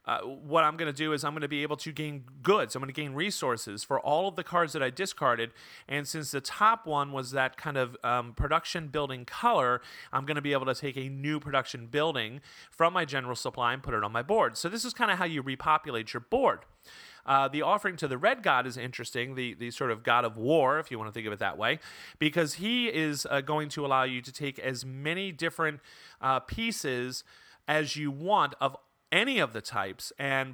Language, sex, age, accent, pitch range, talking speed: English, male, 30-49, American, 130-170 Hz, 240 wpm